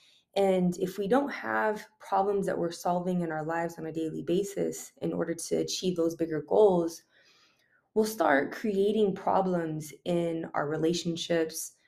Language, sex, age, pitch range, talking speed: English, female, 20-39, 165-195 Hz, 150 wpm